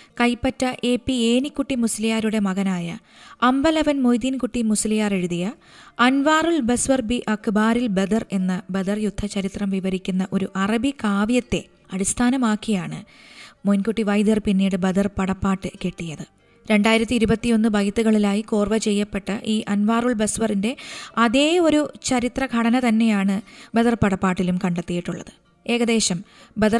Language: Malayalam